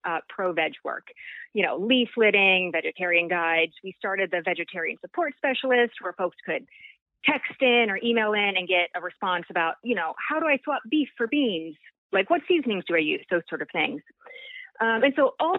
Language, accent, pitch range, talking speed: English, American, 180-255 Hz, 195 wpm